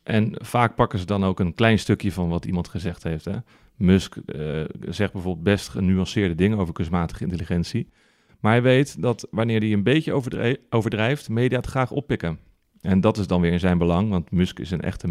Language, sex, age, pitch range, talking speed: Dutch, male, 40-59, 90-115 Hz, 200 wpm